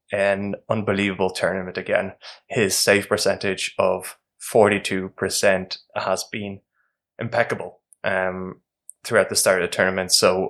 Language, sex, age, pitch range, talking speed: English, male, 20-39, 95-110 Hz, 120 wpm